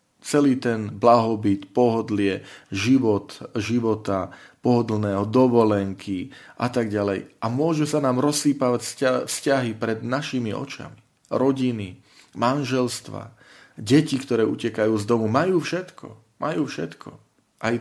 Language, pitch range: Slovak, 105-130 Hz